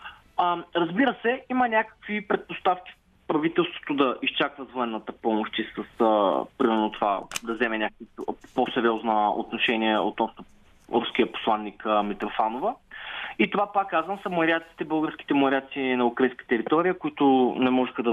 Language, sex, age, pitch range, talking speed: Bulgarian, male, 20-39, 125-175 Hz, 125 wpm